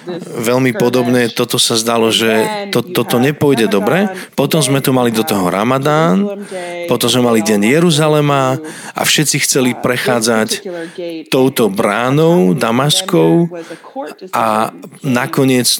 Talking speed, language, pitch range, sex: 120 wpm, Slovak, 120-155 Hz, male